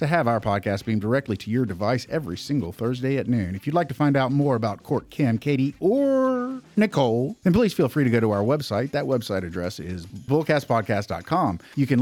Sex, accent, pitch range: male, American, 110-150 Hz